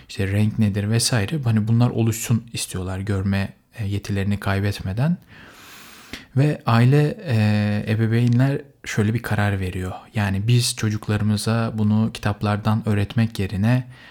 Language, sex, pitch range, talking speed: Turkish, male, 105-120 Hz, 105 wpm